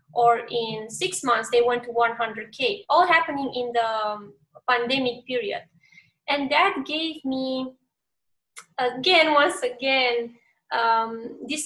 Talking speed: 120 wpm